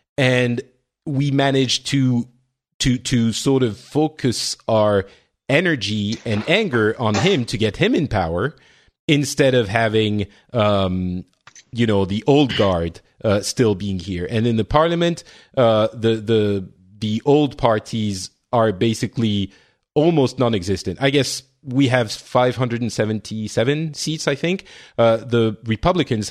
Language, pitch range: English, 105-135 Hz